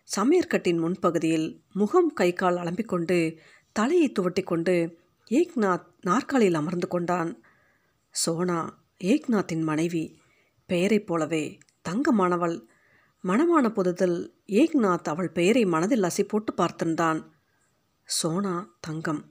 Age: 50-69